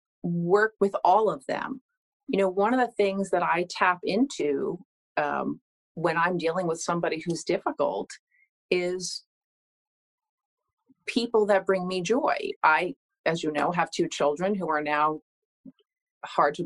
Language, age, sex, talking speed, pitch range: English, 40-59, female, 150 wpm, 160-250 Hz